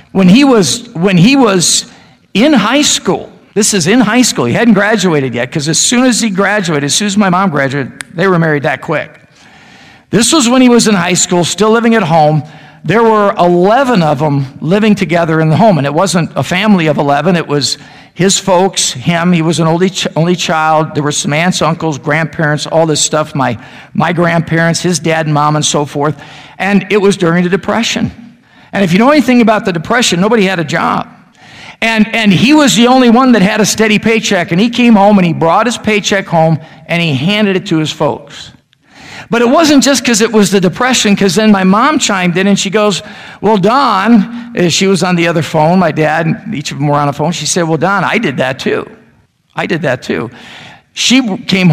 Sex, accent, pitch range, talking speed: male, American, 160-215 Hz, 225 wpm